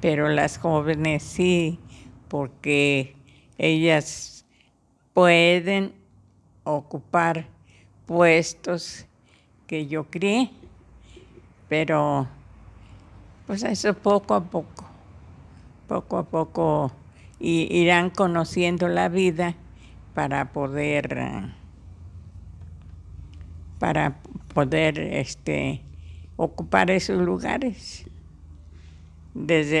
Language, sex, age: English, female, 60-79